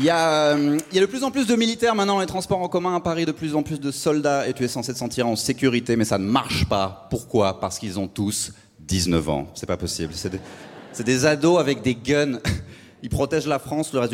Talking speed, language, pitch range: 265 wpm, French, 95-150 Hz